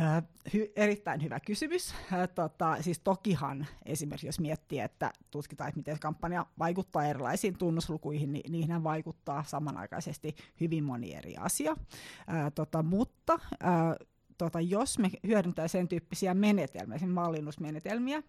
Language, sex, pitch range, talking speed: Finnish, female, 150-180 Hz, 120 wpm